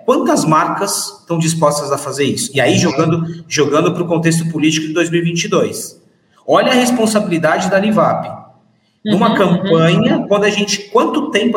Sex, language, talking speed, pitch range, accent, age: male, Portuguese, 150 wpm, 145-195 Hz, Brazilian, 40-59